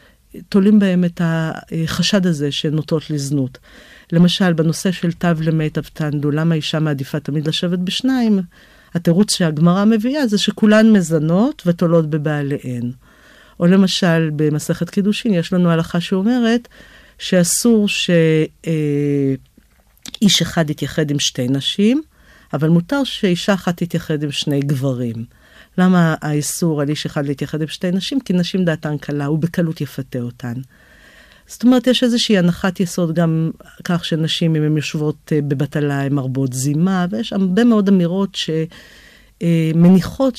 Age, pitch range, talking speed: 50-69, 150-190 Hz, 130 wpm